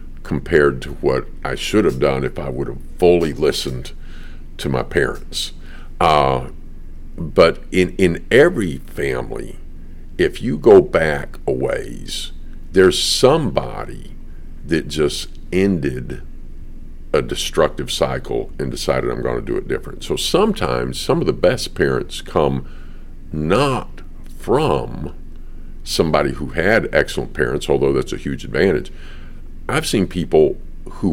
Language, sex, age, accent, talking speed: English, male, 50-69, American, 130 wpm